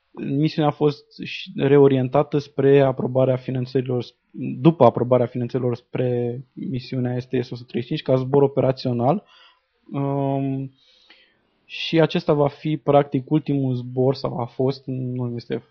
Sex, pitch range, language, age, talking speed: male, 125-145 Hz, Romanian, 20-39, 115 wpm